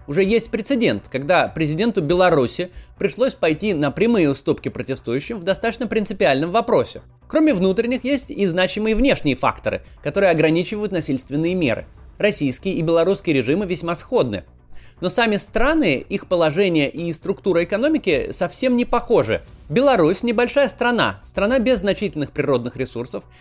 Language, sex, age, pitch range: Russian, male, 20-39, 155-220 Hz